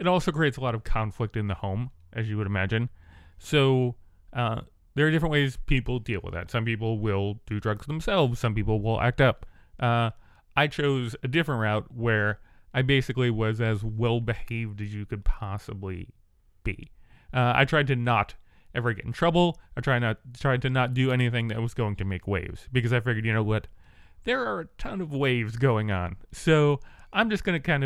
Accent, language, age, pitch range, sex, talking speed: American, English, 30-49, 100-135 Hz, male, 205 wpm